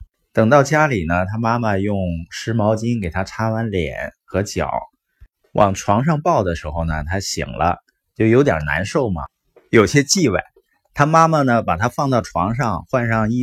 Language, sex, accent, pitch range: Chinese, male, native, 100-140 Hz